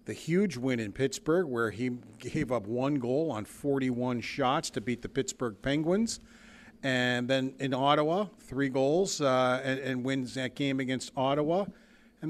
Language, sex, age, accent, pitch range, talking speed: English, male, 50-69, American, 120-145 Hz, 165 wpm